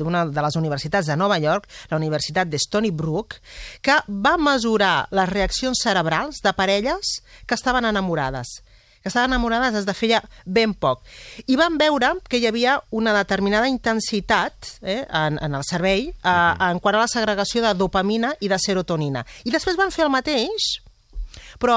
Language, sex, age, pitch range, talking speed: Spanish, female, 40-59, 160-230 Hz, 170 wpm